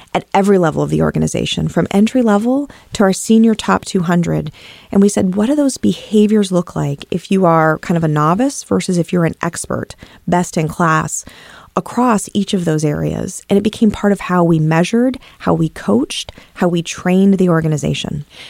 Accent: American